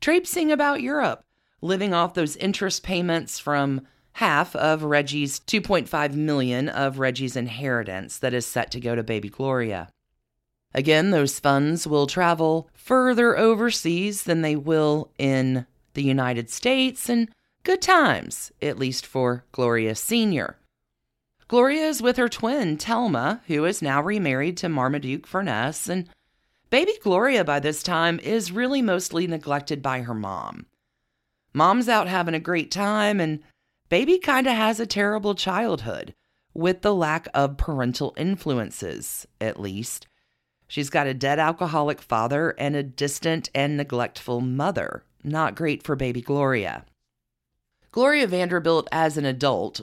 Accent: American